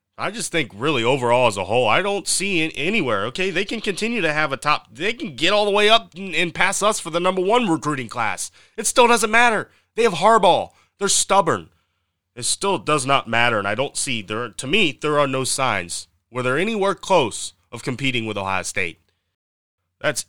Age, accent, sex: 30-49, American, male